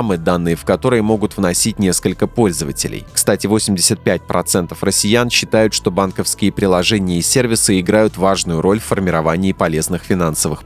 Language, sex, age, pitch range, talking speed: Russian, male, 20-39, 90-110 Hz, 130 wpm